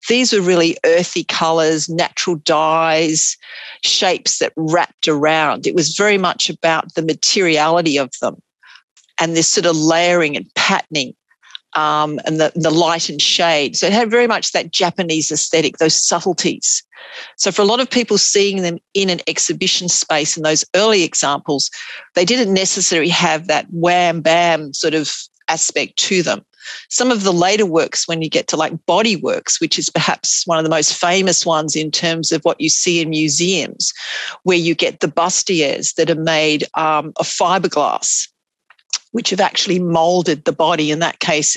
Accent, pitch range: Australian, 155-185 Hz